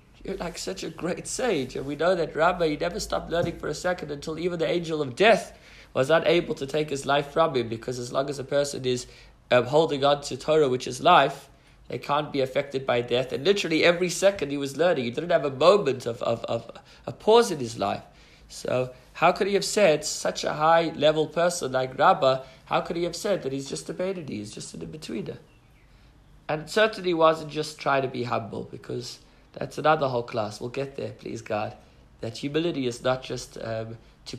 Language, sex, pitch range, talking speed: English, male, 120-160 Hz, 220 wpm